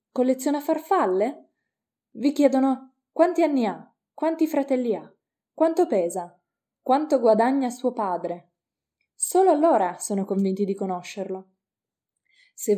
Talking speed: 110 wpm